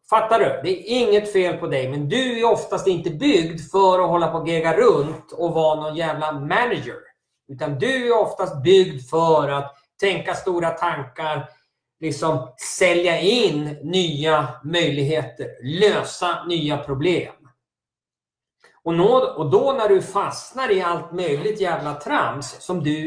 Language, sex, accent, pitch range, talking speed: Swedish, male, native, 155-200 Hz, 145 wpm